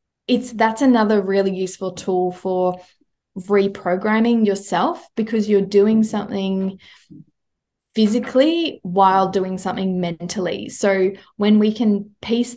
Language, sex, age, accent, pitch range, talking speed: English, female, 20-39, Australian, 185-220 Hz, 110 wpm